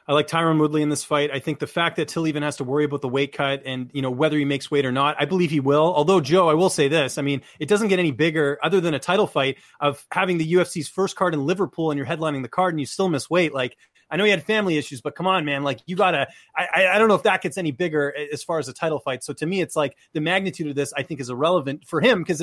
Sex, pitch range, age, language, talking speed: male, 145-185 Hz, 30-49, English, 310 wpm